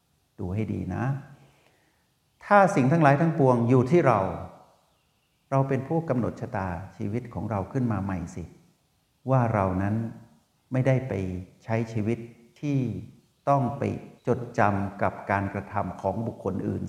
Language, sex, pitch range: Thai, male, 100-120 Hz